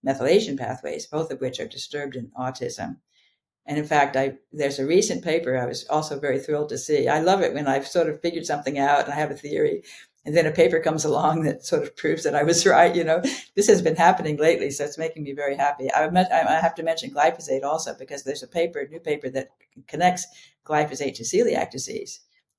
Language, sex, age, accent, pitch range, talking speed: English, female, 60-79, American, 140-170 Hz, 225 wpm